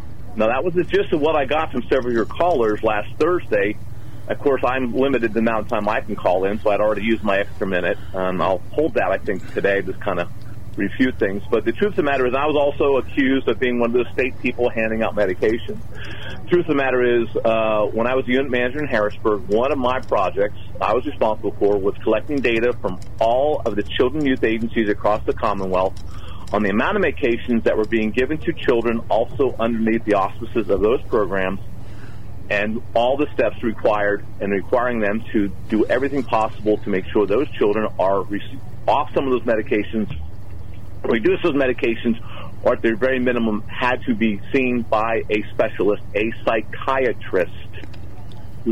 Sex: male